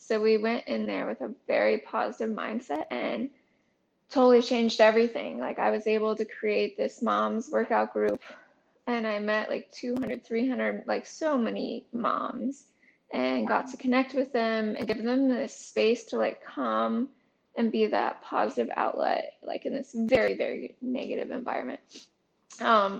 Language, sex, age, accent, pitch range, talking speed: English, female, 10-29, American, 225-270 Hz, 160 wpm